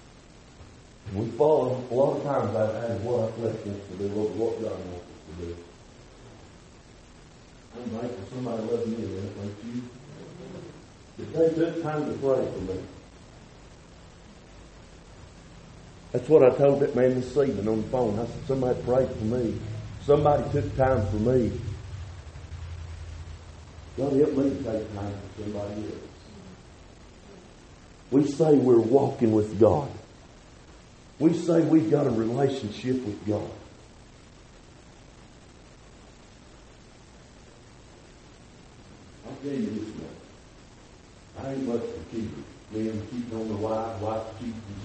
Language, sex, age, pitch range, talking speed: English, male, 50-69, 105-140 Hz, 130 wpm